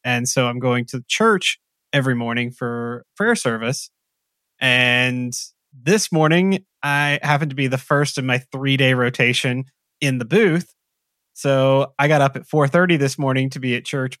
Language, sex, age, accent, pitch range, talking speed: English, male, 20-39, American, 125-145 Hz, 165 wpm